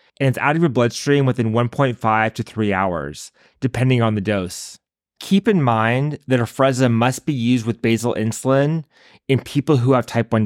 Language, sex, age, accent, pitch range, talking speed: English, male, 30-49, American, 110-135 Hz, 185 wpm